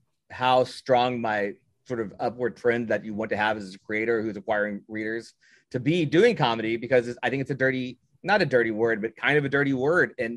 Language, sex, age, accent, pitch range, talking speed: English, male, 30-49, American, 115-150 Hz, 225 wpm